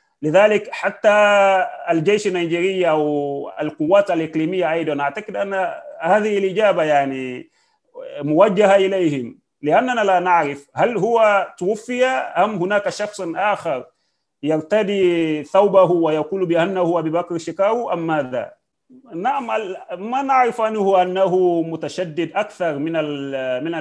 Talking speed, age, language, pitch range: 110 wpm, 30-49, Arabic, 145-200 Hz